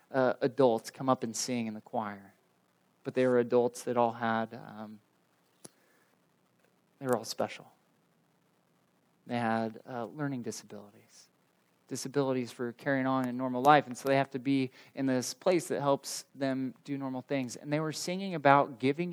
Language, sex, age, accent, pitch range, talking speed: English, male, 20-39, American, 120-145 Hz, 170 wpm